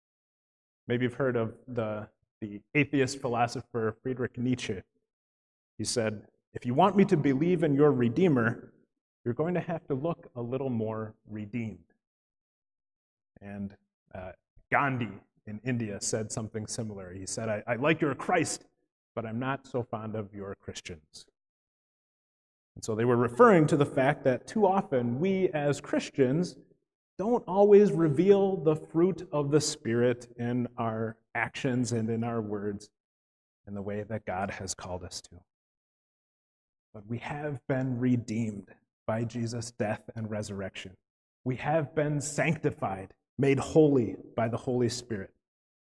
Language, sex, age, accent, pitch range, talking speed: English, male, 30-49, American, 110-160 Hz, 145 wpm